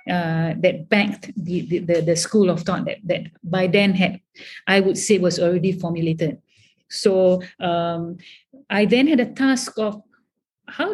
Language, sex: English, female